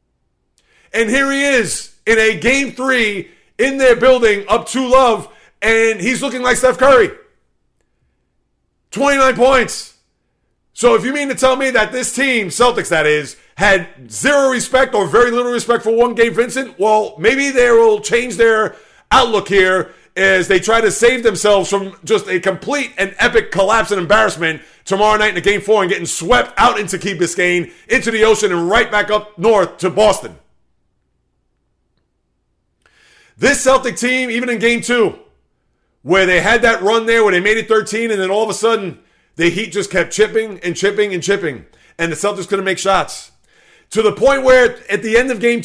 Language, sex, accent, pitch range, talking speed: English, male, American, 190-240 Hz, 185 wpm